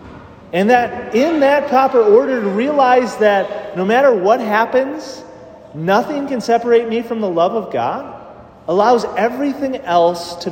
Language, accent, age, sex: English, American, 30-49, male